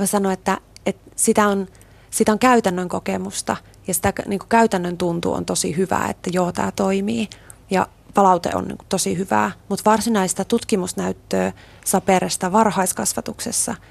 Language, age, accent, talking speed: Finnish, 30-49, native, 145 wpm